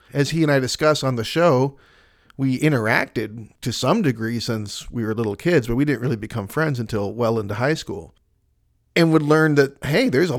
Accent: American